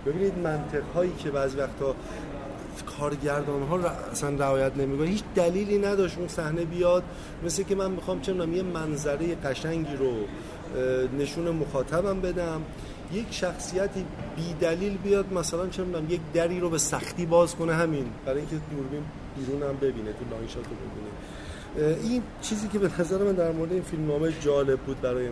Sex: male